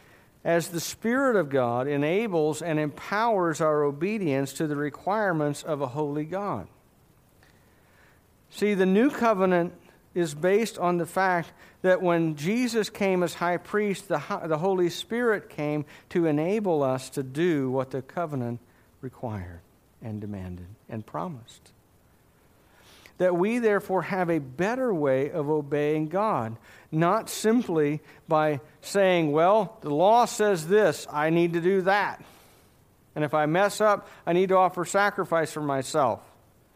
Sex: male